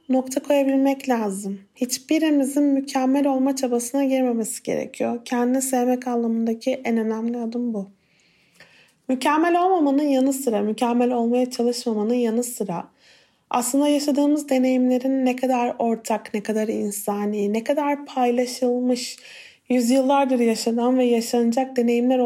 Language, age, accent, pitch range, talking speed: Turkish, 30-49, native, 230-275 Hz, 115 wpm